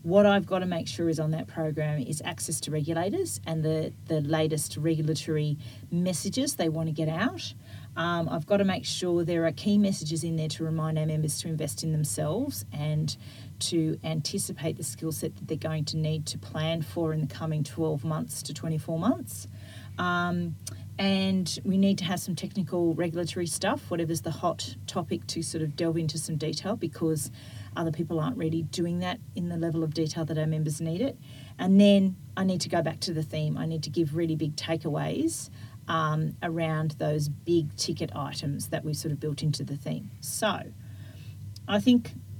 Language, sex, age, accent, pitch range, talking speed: English, female, 40-59, Australian, 150-175 Hz, 195 wpm